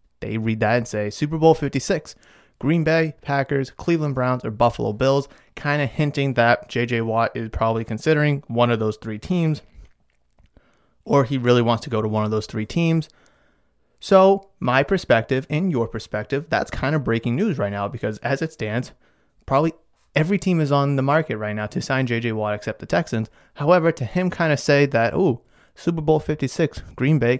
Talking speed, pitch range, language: 195 wpm, 110-145 Hz, English